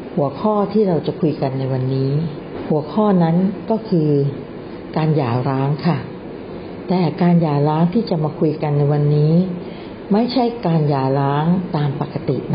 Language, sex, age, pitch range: Thai, female, 60-79, 145-185 Hz